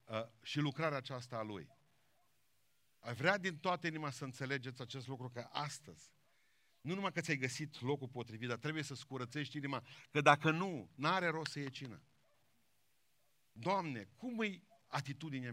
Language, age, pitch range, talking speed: Romanian, 50-69, 120-155 Hz, 155 wpm